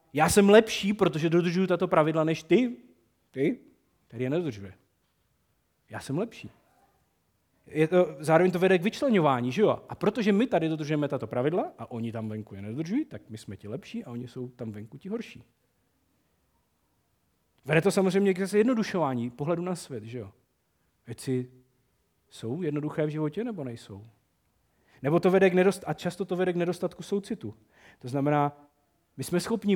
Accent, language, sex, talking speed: native, Czech, male, 170 wpm